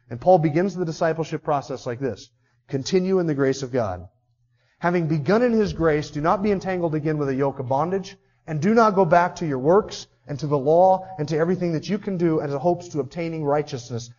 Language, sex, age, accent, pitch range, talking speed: English, male, 30-49, American, 130-185 Hz, 230 wpm